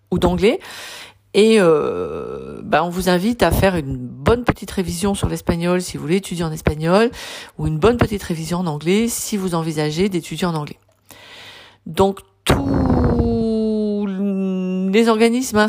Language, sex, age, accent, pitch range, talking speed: French, female, 40-59, French, 170-220 Hz, 150 wpm